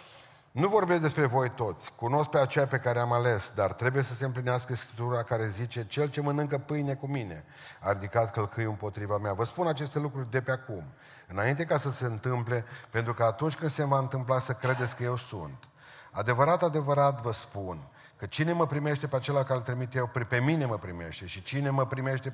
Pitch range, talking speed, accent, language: 110-135 Hz, 200 wpm, native, Romanian